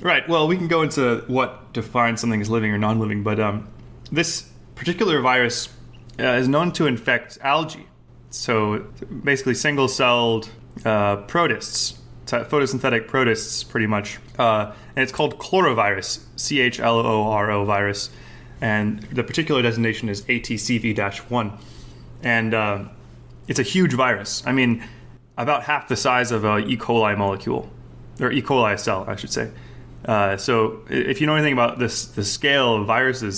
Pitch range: 110-130 Hz